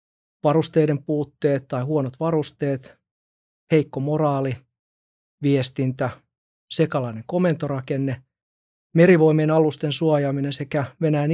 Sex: male